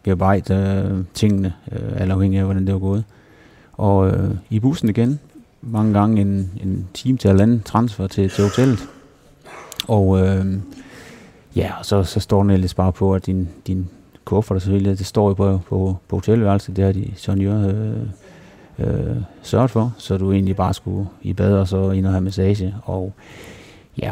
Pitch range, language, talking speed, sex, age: 95-105 Hz, Danish, 180 wpm, male, 30-49